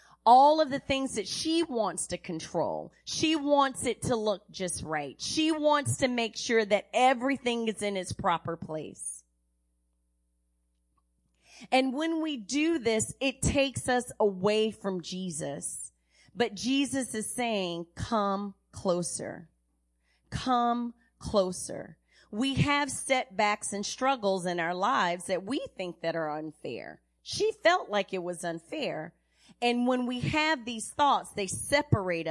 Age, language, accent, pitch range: 30-49, English, American, 145-240 Hz